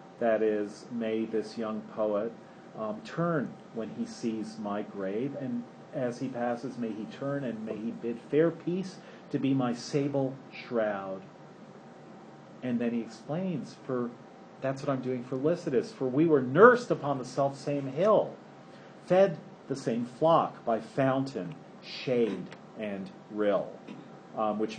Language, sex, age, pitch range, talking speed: English, male, 40-59, 110-140 Hz, 150 wpm